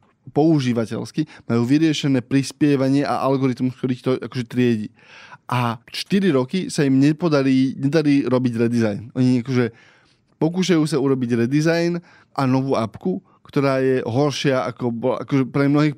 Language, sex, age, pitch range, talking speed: Slovak, male, 20-39, 125-150 Hz, 135 wpm